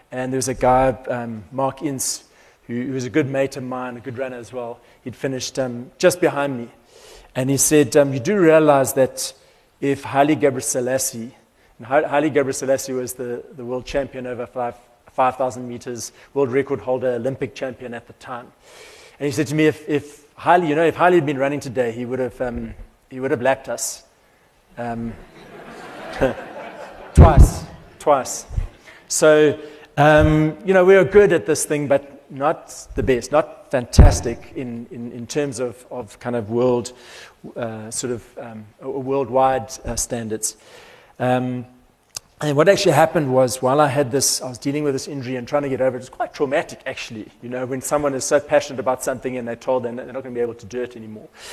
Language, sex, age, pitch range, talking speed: English, male, 30-49, 120-140 Hz, 200 wpm